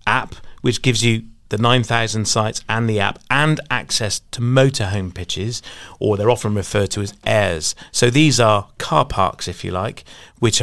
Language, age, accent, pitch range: English, 30-49, British, 95-125 Hz